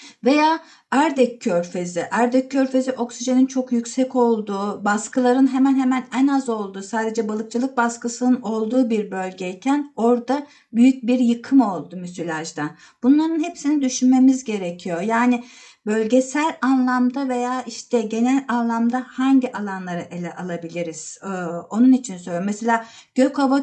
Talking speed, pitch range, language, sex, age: 120 wpm, 205-260 Hz, Turkish, female, 50-69